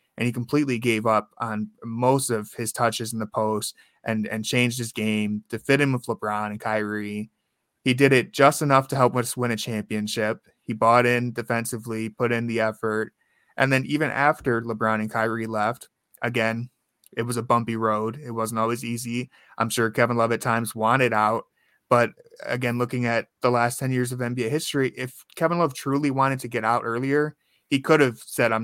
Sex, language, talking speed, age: male, English, 200 wpm, 20-39